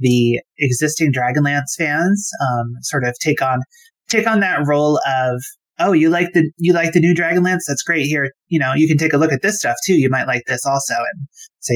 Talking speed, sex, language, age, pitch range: 225 wpm, male, English, 30-49, 130-165 Hz